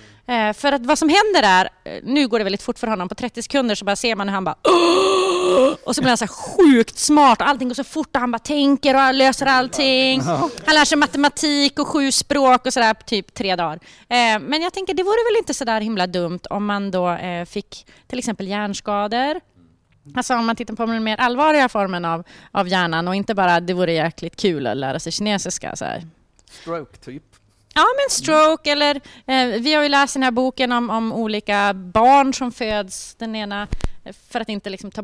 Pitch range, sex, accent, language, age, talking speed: 200-270 Hz, female, Swedish, English, 30-49, 200 wpm